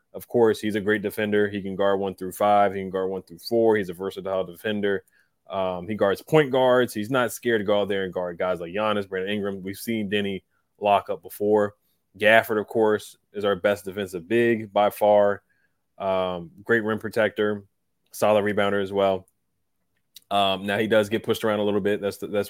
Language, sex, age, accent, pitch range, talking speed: English, male, 20-39, American, 95-115 Hz, 210 wpm